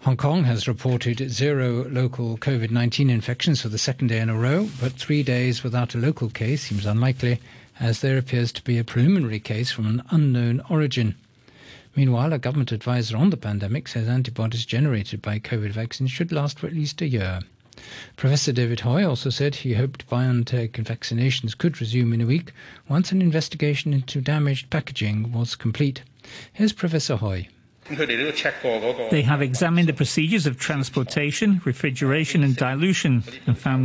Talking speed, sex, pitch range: 165 wpm, male, 120-150 Hz